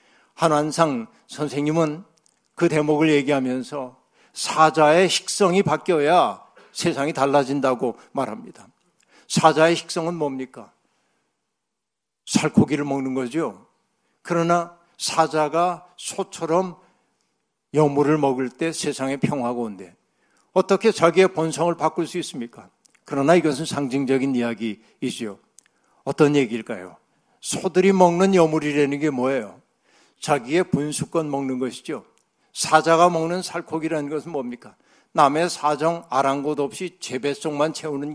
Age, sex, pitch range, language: 60-79, male, 145-185 Hz, Korean